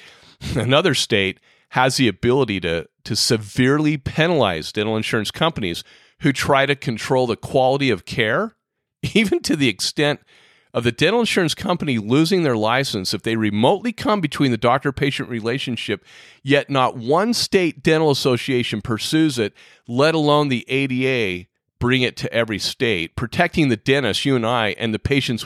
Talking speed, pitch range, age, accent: 155 wpm, 110-145 Hz, 40-59, American